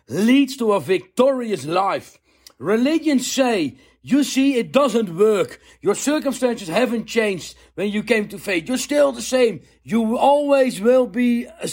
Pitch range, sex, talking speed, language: 200-260 Hz, male, 155 wpm, English